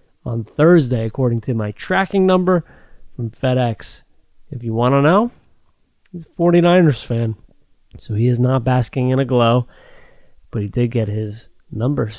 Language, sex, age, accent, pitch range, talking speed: English, male, 30-49, American, 115-135 Hz, 160 wpm